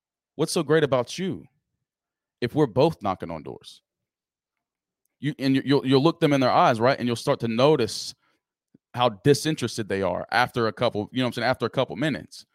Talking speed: 205 wpm